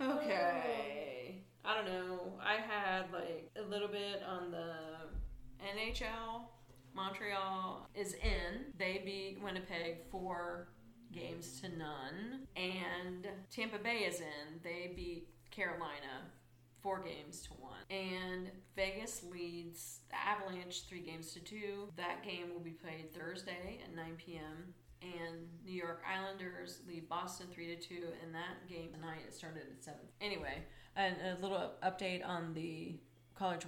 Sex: female